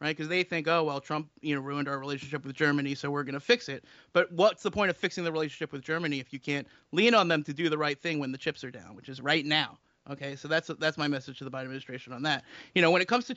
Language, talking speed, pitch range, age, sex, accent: English, 305 wpm, 140-170 Hz, 30-49, male, American